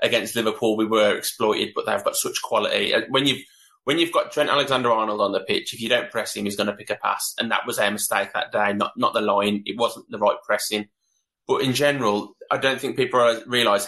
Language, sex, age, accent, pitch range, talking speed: English, male, 20-39, British, 105-125 Hz, 240 wpm